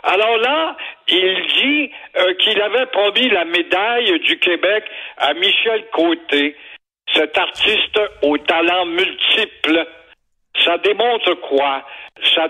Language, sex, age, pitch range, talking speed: French, male, 60-79, 175-280 Hz, 115 wpm